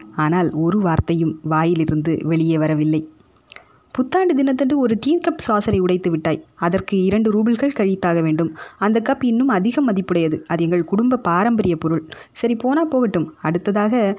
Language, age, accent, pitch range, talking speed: Tamil, 20-39, native, 170-225 Hz, 130 wpm